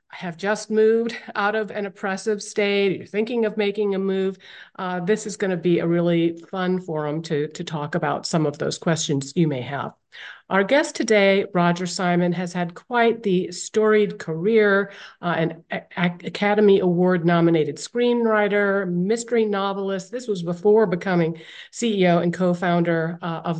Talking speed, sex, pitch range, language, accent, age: 155 wpm, female, 175-215 Hz, English, American, 50-69